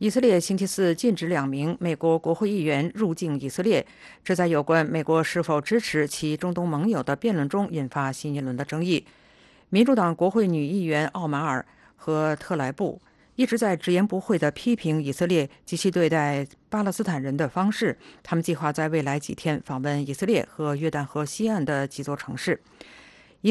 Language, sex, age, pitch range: English, female, 50-69, 150-195 Hz